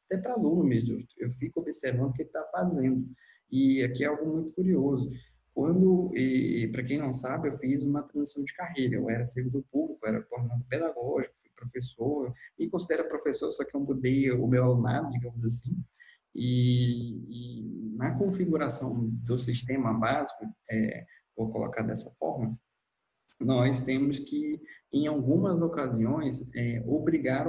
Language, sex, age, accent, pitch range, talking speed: Portuguese, male, 20-39, Brazilian, 120-145 Hz, 160 wpm